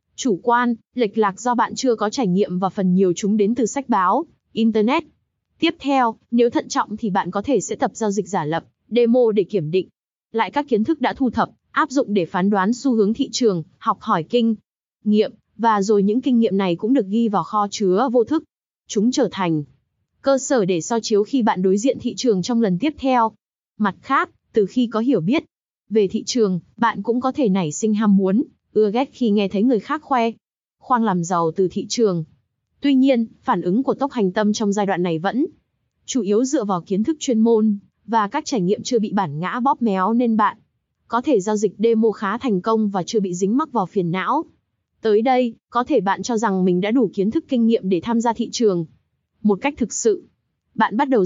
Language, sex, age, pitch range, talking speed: Vietnamese, female, 20-39, 195-245 Hz, 230 wpm